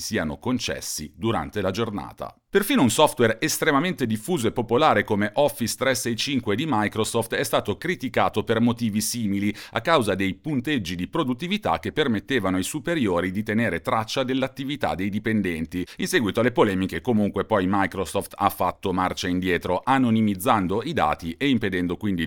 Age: 40-59